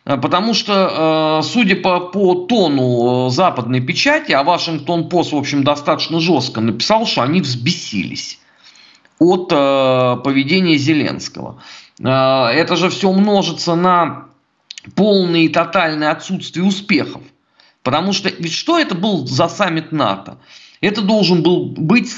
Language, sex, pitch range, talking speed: Russian, male, 145-190 Hz, 120 wpm